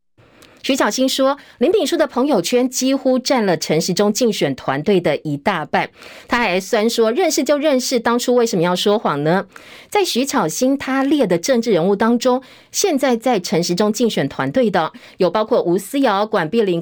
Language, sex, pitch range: Chinese, female, 170-245 Hz